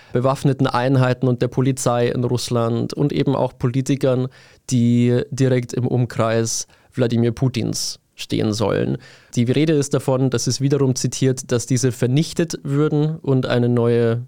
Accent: German